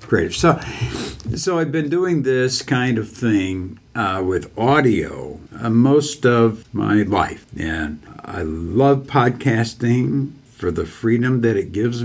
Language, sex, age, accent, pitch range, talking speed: English, male, 60-79, American, 90-125 Hz, 135 wpm